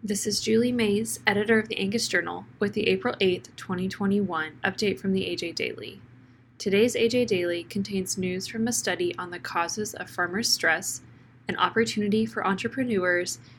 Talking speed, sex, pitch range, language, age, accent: 165 wpm, female, 170-215 Hz, English, 10-29, American